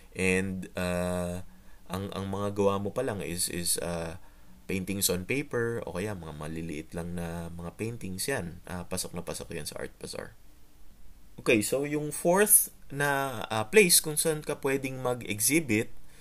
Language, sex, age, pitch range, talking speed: Filipino, male, 20-39, 95-130 Hz, 165 wpm